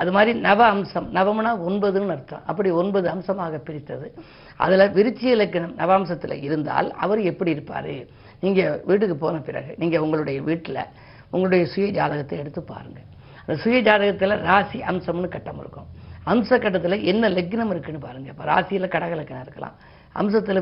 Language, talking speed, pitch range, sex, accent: Tamil, 145 wpm, 165-210 Hz, female, native